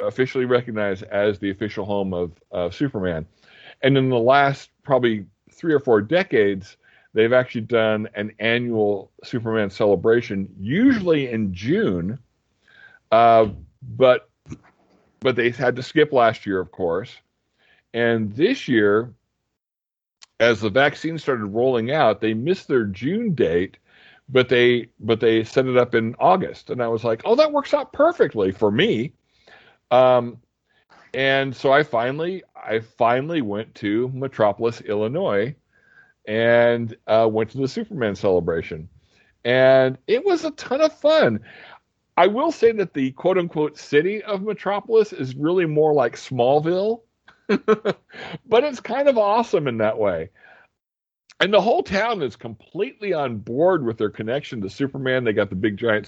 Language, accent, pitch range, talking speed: English, American, 110-150 Hz, 150 wpm